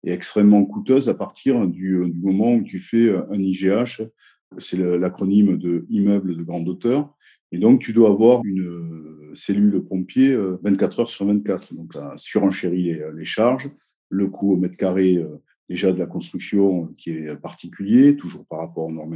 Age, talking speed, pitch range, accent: 50-69, 165 wpm, 90-115 Hz, French